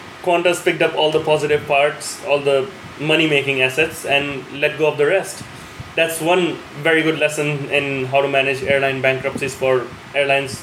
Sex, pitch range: male, 135-160 Hz